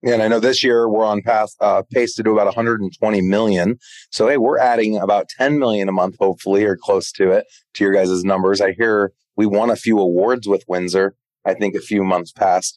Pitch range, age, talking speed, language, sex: 95-115 Hz, 30-49, 230 wpm, English, male